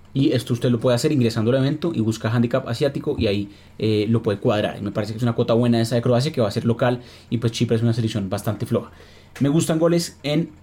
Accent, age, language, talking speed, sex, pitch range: Colombian, 20-39, Spanish, 265 wpm, male, 115-135 Hz